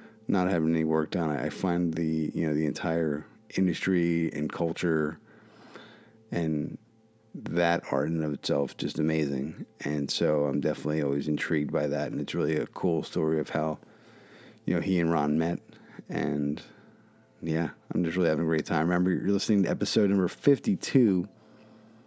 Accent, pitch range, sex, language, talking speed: American, 80-105 Hz, male, English, 170 wpm